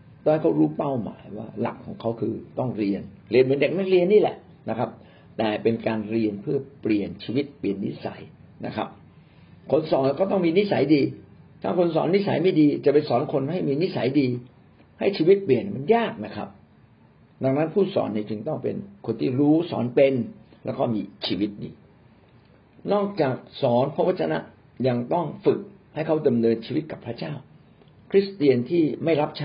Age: 60-79